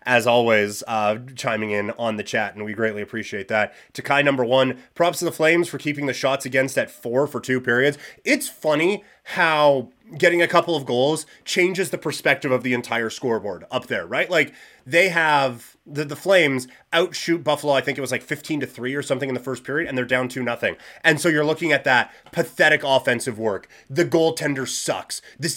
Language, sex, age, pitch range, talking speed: English, male, 30-49, 130-175 Hz, 205 wpm